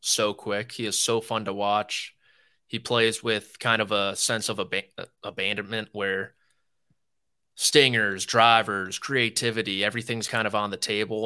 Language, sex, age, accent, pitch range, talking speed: English, male, 20-39, American, 105-115 Hz, 150 wpm